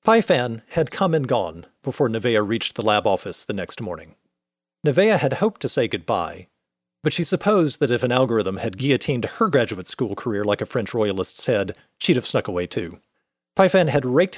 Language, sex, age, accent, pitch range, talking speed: English, male, 40-59, American, 100-150 Hz, 195 wpm